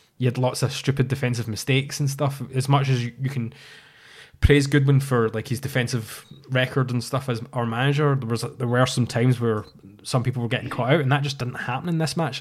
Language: English